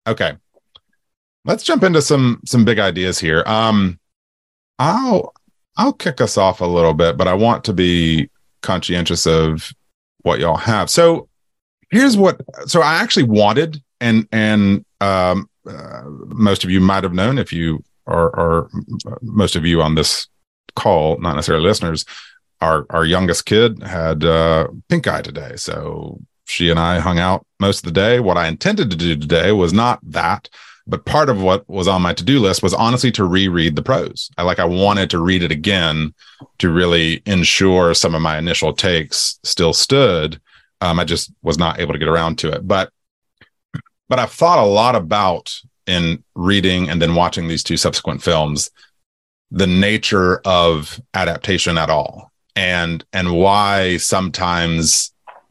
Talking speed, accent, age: 170 wpm, American, 30-49